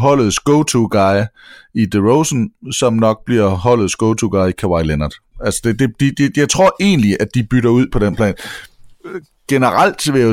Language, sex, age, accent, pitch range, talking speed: English, male, 30-49, Danish, 95-130 Hz, 175 wpm